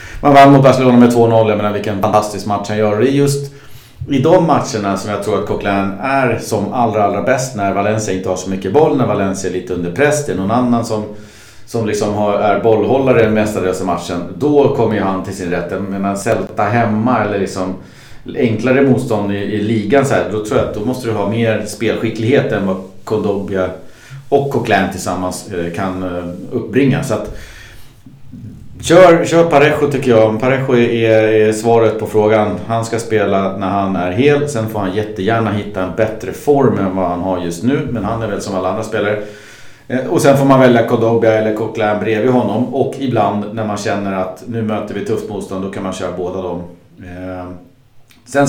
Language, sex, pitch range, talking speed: Swedish, male, 95-120 Hz, 200 wpm